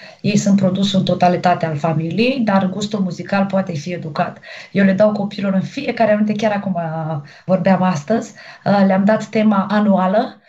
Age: 20-39